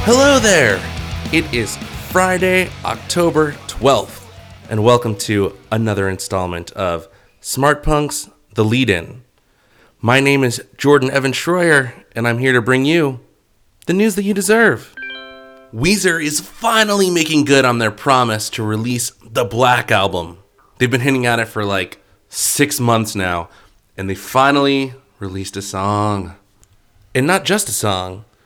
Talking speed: 145 wpm